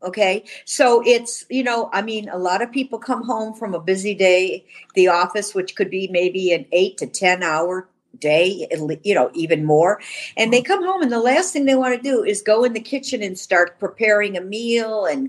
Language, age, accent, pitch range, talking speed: English, 50-69, American, 200-265 Hz, 220 wpm